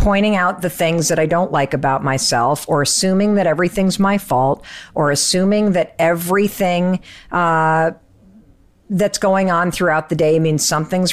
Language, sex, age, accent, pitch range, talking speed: English, female, 50-69, American, 165-235 Hz, 155 wpm